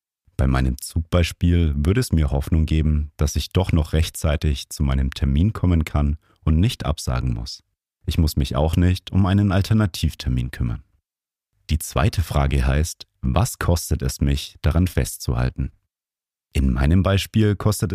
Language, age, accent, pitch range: German, 40-59, German, 75-95 Hz